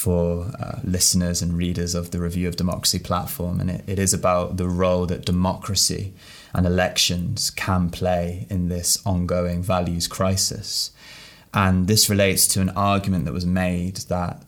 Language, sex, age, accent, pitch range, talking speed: English, male, 20-39, British, 90-100 Hz, 160 wpm